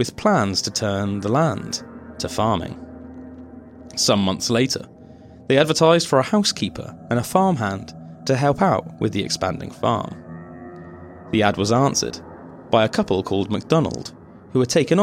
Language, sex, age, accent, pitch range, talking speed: English, male, 30-49, British, 90-130 Hz, 150 wpm